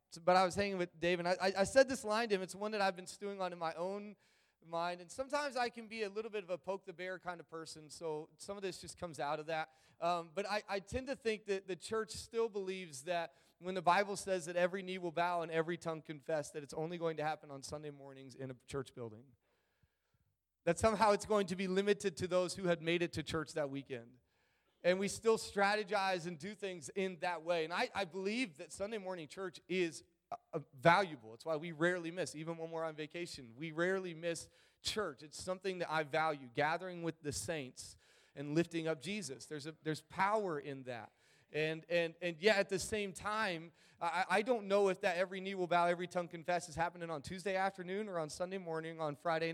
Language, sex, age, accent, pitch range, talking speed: English, male, 30-49, American, 160-195 Hz, 230 wpm